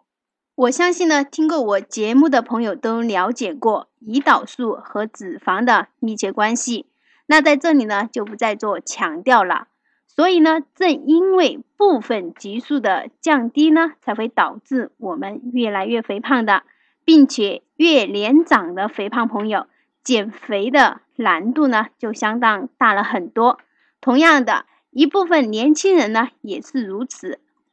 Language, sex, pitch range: Chinese, female, 220-305 Hz